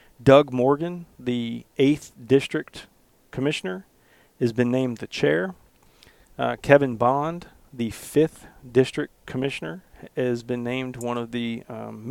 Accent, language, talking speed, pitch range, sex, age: American, English, 125 wpm, 110-130 Hz, male, 40-59